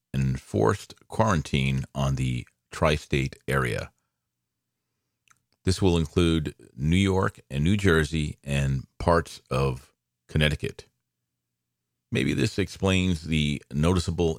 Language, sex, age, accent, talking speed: English, male, 40-59, American, 100 wpm